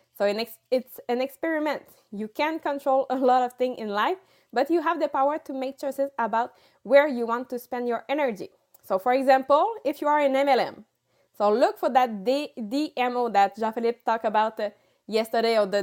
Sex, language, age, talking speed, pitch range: female, English, 20-39, 195 wpm, 225-275 Hz